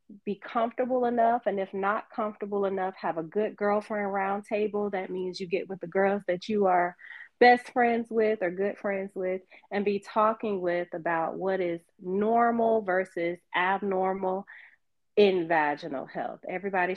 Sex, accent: female, American